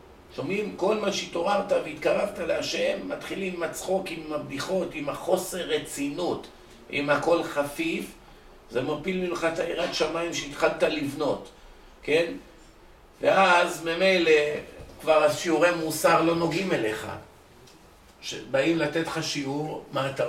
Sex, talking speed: male, 120 wpm